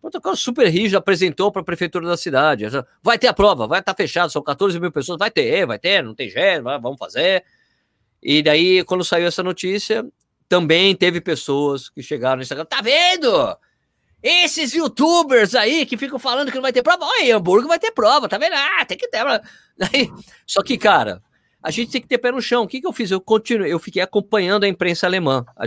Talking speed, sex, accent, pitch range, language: 215 wpm, male, Brazilian, 140-205 Hz, Portuguese